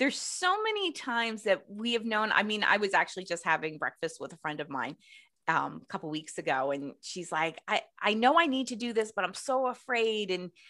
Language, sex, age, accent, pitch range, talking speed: English, female, 20-39, American, 185-245 Hz, 240 wpm